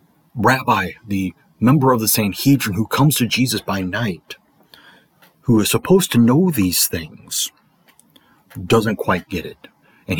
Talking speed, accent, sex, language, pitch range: 140 wpm, American, male, English, 100-130 Hz